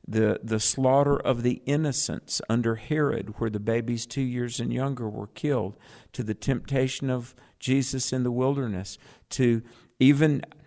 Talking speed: 150 wpm